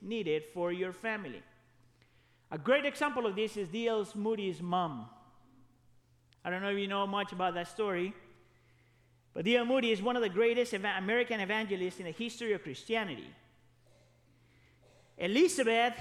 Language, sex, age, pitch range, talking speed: English, male, 40-59, 180-240 Hz, 145 wpm